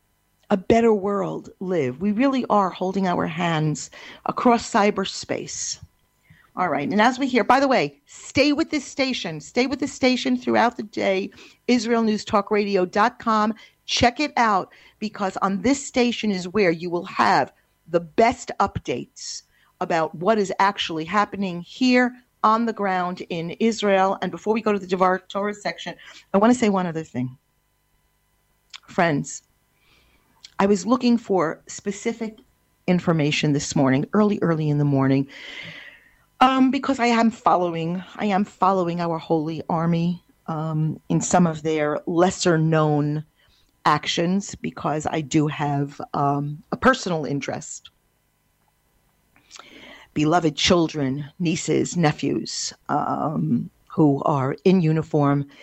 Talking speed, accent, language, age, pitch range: 135 wpm, American, English, 40-59, 155-215 Hz